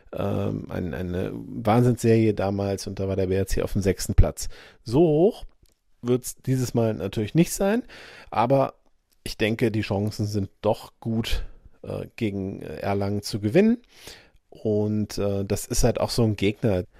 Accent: German